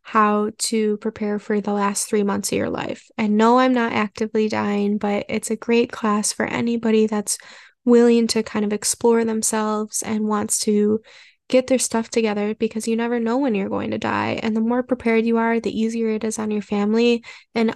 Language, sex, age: English, female, 10-29